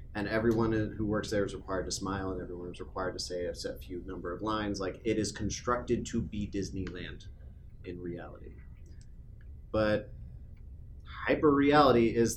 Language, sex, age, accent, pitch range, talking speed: English, male, 30-49, American, 95-120 Hz, 175 wpm